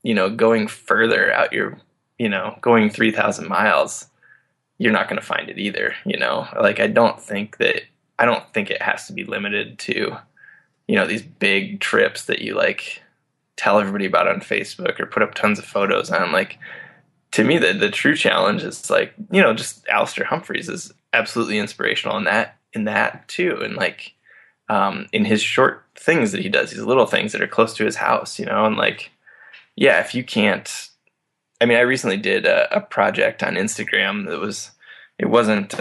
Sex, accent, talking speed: male, American, 195 wpm